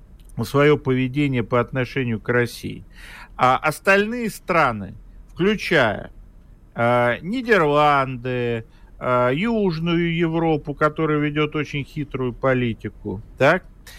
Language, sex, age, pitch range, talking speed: Russian, male, 50-69, 135-190 Hz, 80 wpm